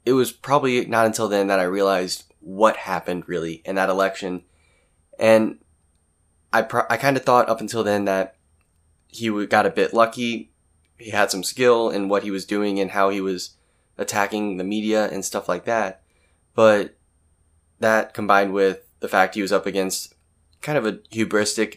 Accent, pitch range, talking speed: American, 90-110 Hz, 180 wpm